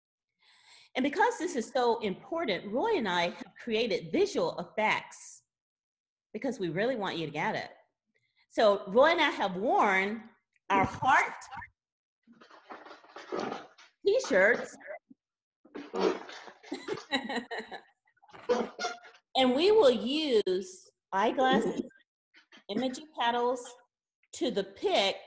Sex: female